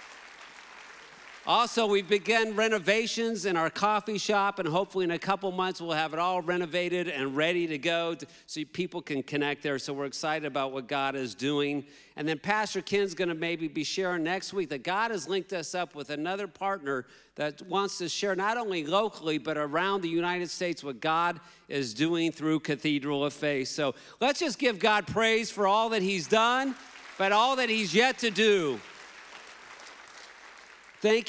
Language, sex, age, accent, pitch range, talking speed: English, male, 50-69, American, 150-200 Hz, 180 wpm